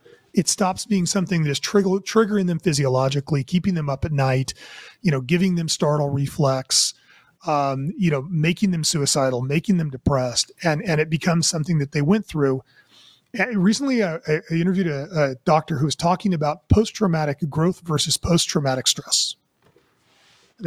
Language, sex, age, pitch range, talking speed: English, male, 30-49, 150-195 Hz, 165 wpm